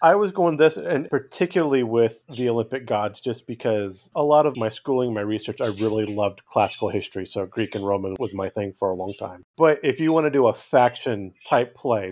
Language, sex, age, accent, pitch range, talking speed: English, male, 30-49, American, 110-130 Hz, 225 wpm